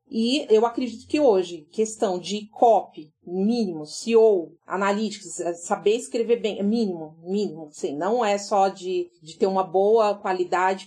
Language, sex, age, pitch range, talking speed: Portuguese, female, 30-49, 185-230 Hz, 150 wpm